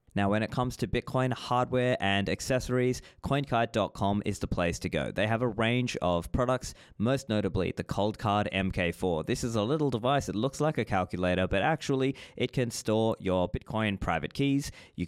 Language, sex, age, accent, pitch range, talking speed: English, male, 20-39, Australian, 95-125 Hz, 185 wpm